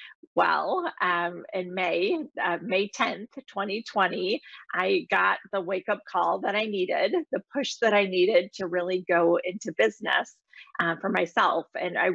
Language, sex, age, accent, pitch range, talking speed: English, female, 30-49, American, 175-215 Hz, 155 wpm